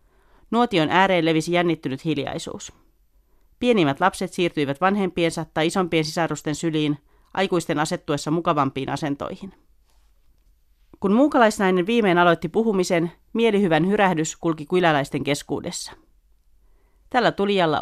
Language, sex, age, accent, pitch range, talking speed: Finnish, female, 40-59, native, 145-190 Hz, 100 wpm